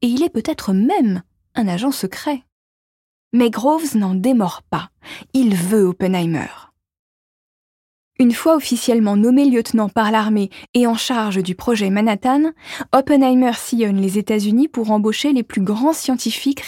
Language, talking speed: French, 140 wpm